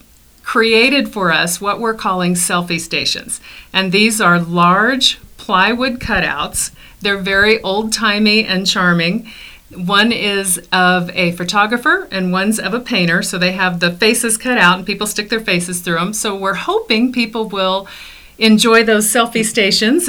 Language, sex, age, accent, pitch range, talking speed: English, female, 40-59, American, 175-220 Hz, 155 wpm